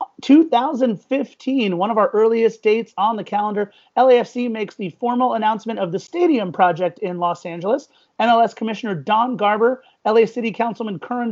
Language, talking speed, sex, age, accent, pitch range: English, 155 wpm, male, 30-49, American, 195-230 Hz